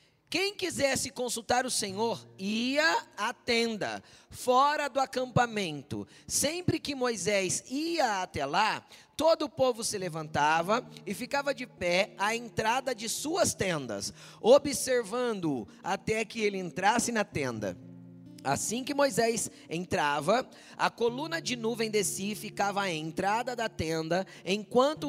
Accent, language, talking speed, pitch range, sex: Brazilian, Portuguese, 130 wpm, 155-240 Hz, male